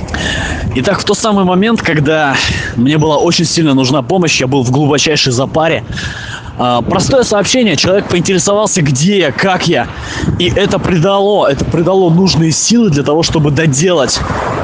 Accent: native